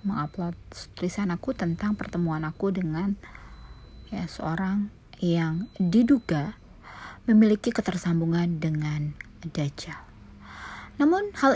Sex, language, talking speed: female, Indonesian, 90 wpm